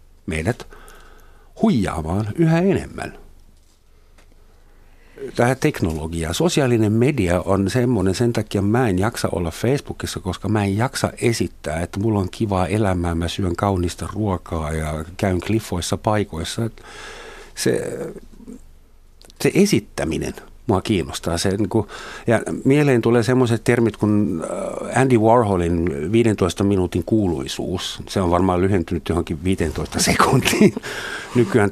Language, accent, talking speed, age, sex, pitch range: Finnish, native, 115 wpm, 60-79, male, 85-115 Hz